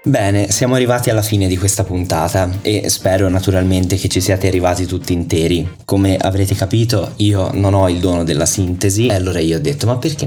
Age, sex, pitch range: 20-39, male, 90-105 Hz